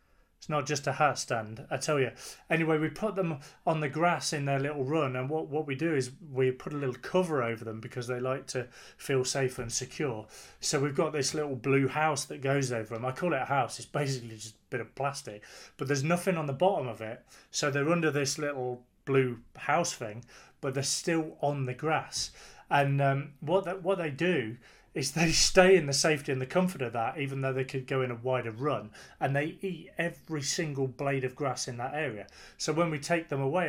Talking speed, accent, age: 230 wpm, British, 30-49